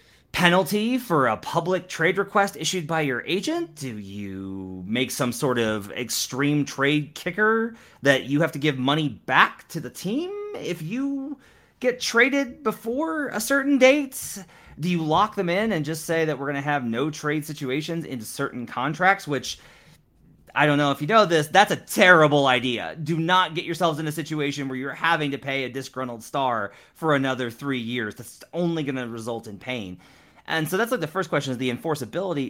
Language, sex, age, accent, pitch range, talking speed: English, male, 30-49, American, 120-175 Hz, 190 wpm